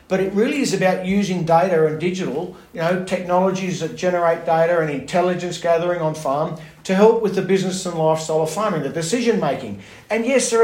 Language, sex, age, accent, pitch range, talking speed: English, male, 50-69, Australian, 160-195 Hz, 195 wpm